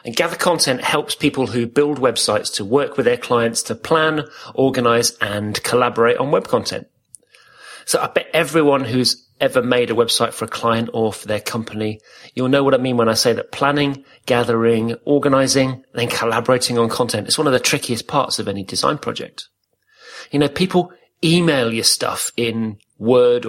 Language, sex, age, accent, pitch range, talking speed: English, male, 30-49, British, 115-145 Hz, 180 wpm